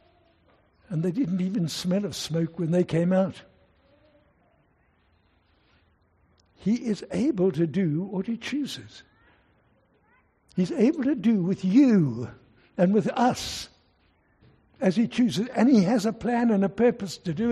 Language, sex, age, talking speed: English, male, 60-79, 140 wpm